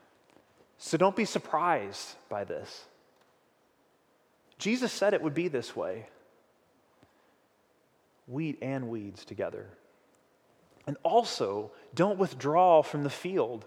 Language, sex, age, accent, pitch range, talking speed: English, male, 30-49, American, 130-180 Hz, 105 wpm